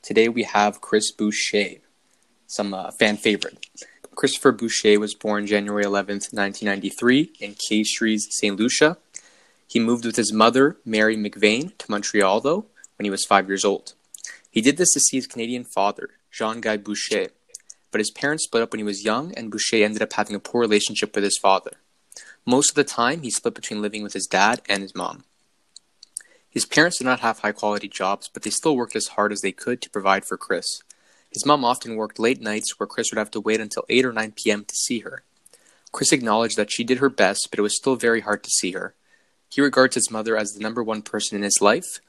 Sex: male